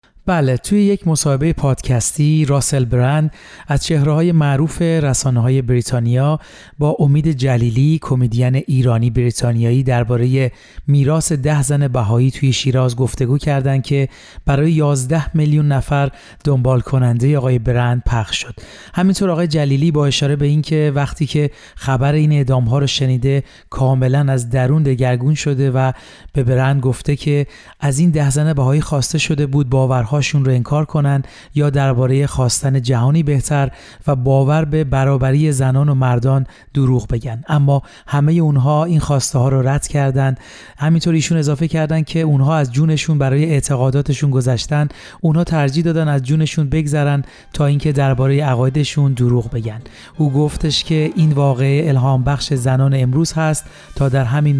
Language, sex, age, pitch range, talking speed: Persian, male, 30-49, 130-150 Hz, 145 wpm